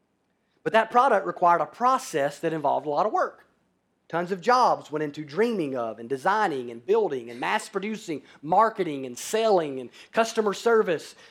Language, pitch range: English, 155-220 Hz